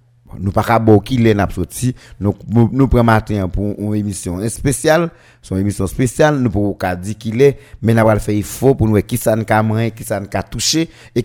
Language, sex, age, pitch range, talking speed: French, male, 50-69, 105-125 Hz, 215 wpm